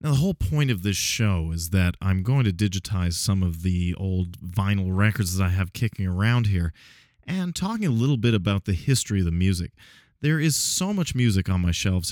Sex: male